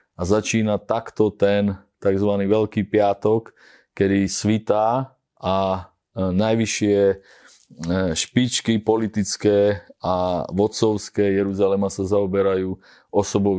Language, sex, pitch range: Slovak, male, 95-110 Hz